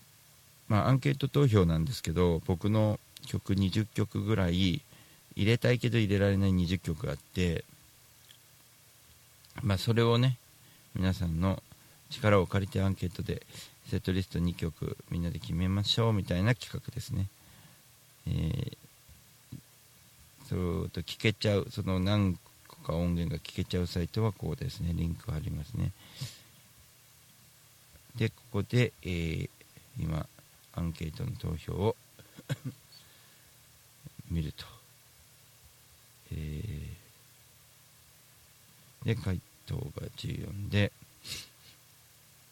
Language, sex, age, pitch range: Japanese, male, 50-69, 95-130 Hz